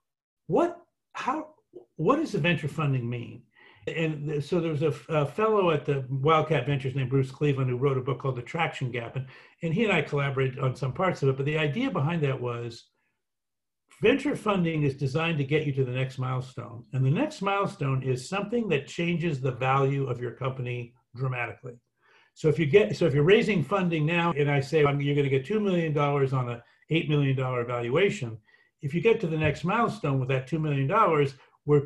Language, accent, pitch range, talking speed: English, American, 135-185 Hz, 205 wpm